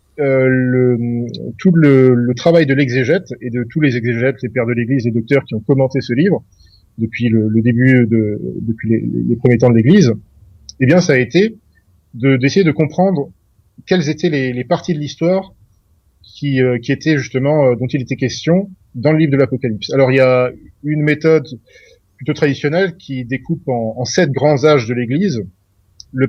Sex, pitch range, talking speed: male, 115-150 Hz, 195 wpm